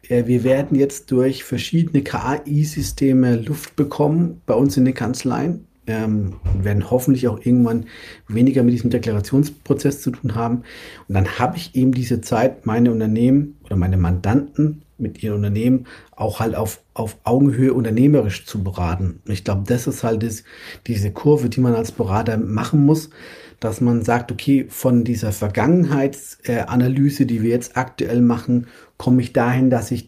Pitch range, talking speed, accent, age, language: 110-135 Hz, 160 wpm, German, 50-69, German